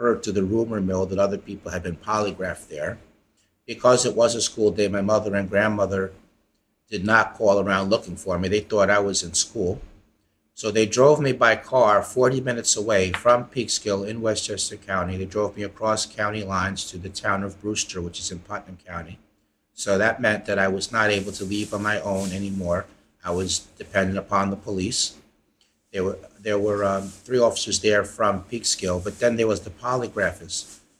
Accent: American